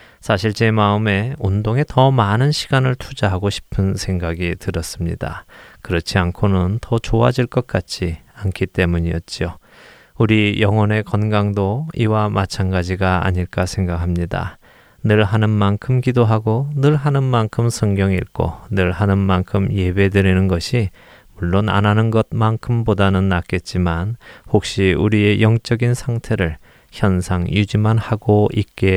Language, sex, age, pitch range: Korean, male, 20-39, 90-115 Hz